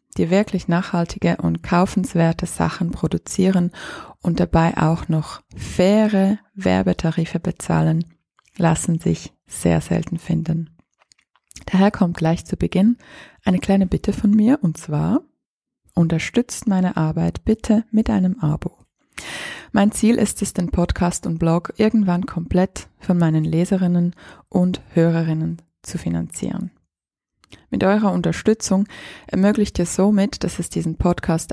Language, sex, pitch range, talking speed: German, female, 165-205 Hz, 125 wpm